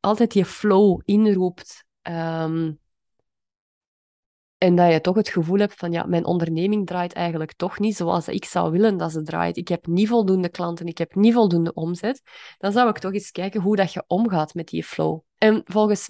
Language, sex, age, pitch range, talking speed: Dutch, female, 20-39, 170-210 Hz, 185 wpm